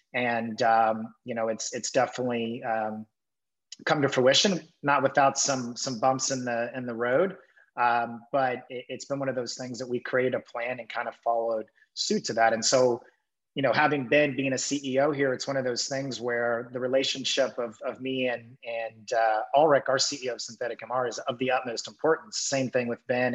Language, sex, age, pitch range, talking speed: English, male, 30-49, 115-130 Hz, 210 wpm